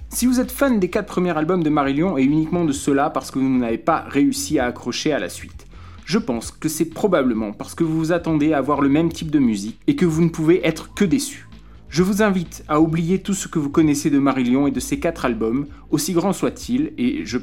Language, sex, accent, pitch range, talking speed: French, male, French, 125-165 Hz, 250 wpm